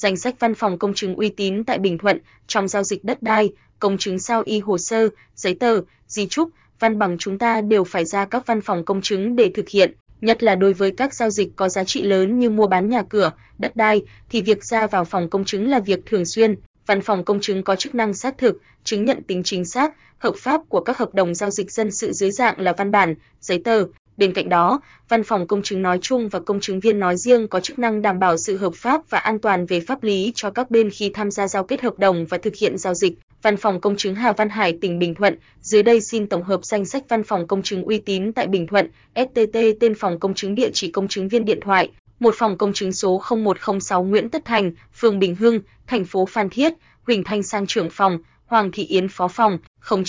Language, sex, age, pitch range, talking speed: Vietnamese, female, 20-39, 190-225 Hz, 250 wpm